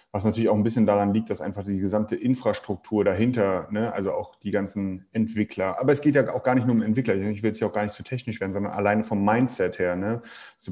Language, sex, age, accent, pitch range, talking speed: German, male, 30-49, German, 105-120 Hz, 245 wpm